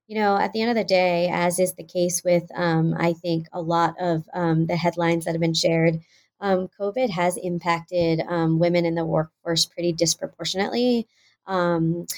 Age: 20-39